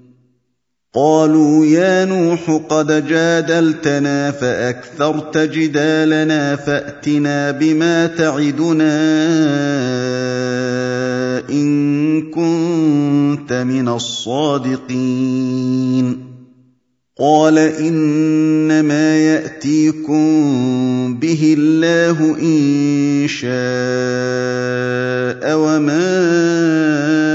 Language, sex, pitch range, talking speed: Indonesian, male, 130-160 Hz, 50 wpm